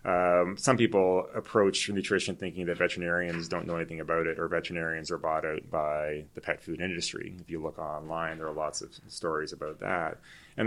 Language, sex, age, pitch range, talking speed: English, male, 30-49, 80-95 Hz, 195 wpm